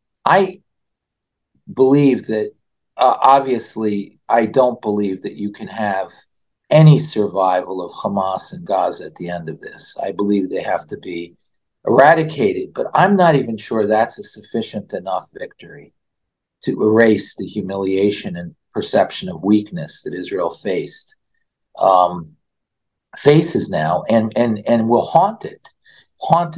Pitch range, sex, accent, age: 100-135 Hz, male, American, 50-69